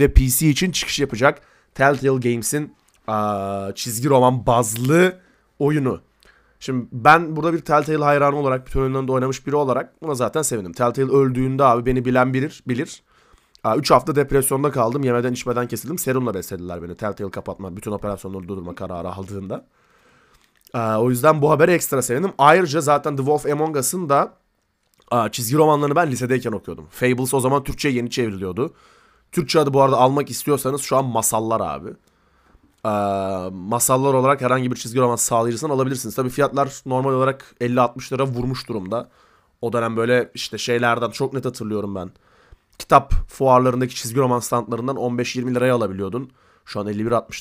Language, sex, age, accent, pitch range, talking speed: Turkish, male, 30-49, native, 115-140 Hz, 160 wpm